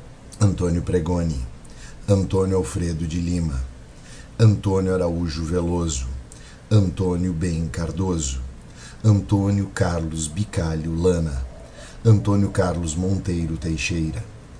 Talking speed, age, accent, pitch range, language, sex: 80 wpm, 50-69, Brazilian, 80-95 Hz, Portuguese, male